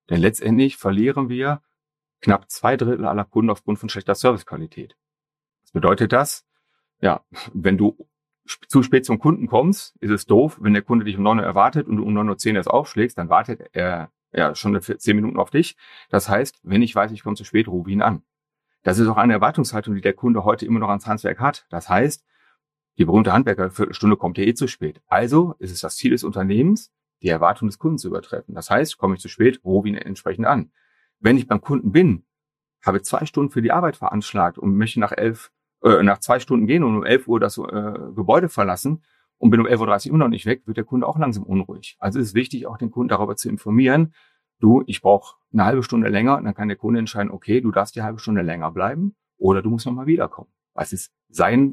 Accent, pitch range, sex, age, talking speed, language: German, 100-135 Hz, male, 40-59, 225 wpm, German